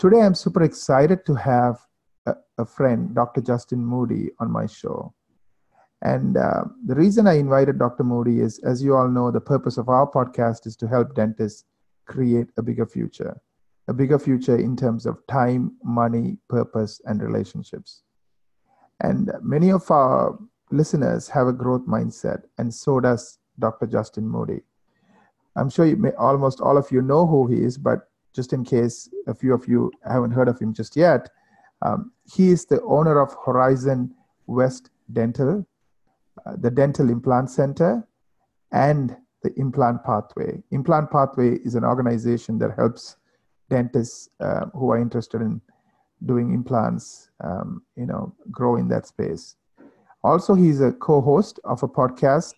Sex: male